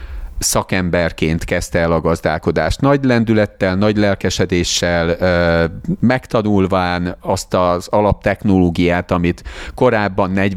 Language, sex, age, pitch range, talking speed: Hungarian, male, 40-59, 90-120 Hz, 85 wpm